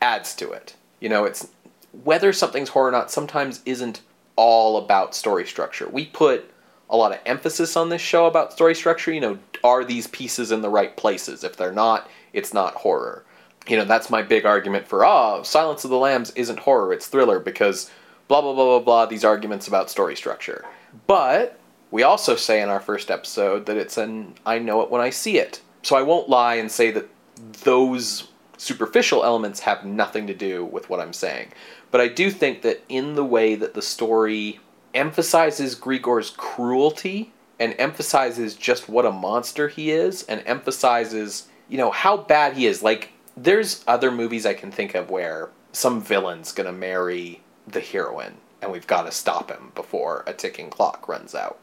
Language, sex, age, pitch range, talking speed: English, male, 30-49, 110-165 Hz, 190 wpm